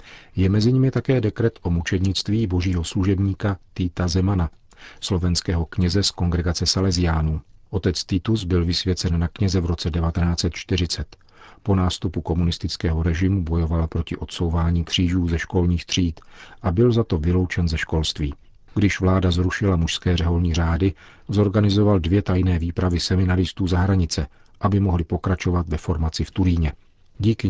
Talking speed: 140 wpm